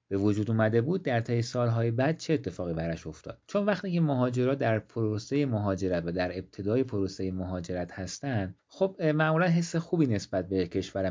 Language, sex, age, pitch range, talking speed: Persian, male, 30-49, 95-130 Hz, 175 wpm